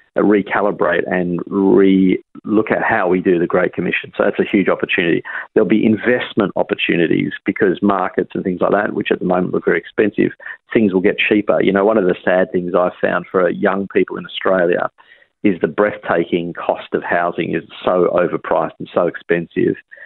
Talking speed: 190 wpm